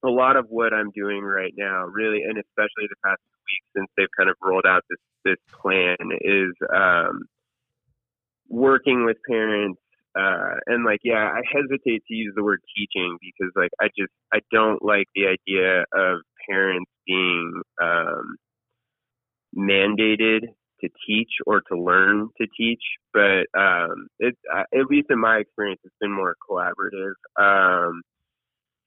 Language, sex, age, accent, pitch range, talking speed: English, male, 20-39, American, 100-120 Hz, 155 wpm